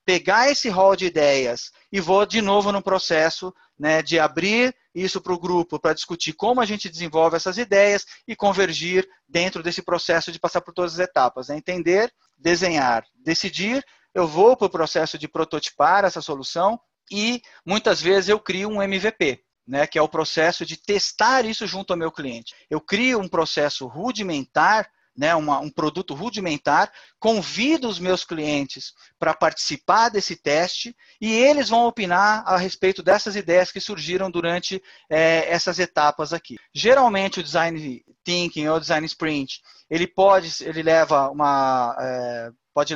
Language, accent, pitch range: Portuguese, Brazilian, 155-195 Hz